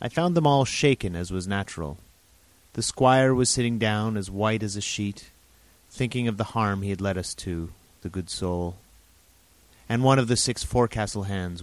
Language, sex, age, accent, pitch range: Korean, male, 30-49, American, 85-110 Hz